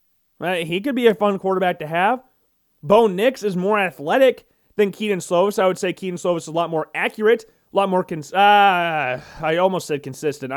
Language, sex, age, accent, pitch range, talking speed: English, male, 30-49, American, 175-230 Hz, 205 wpm